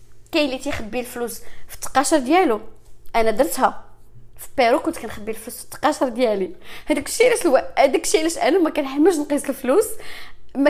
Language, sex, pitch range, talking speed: English, female, 230-320 Hz, 155 wpm